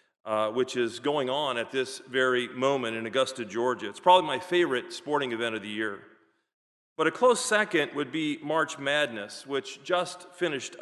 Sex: male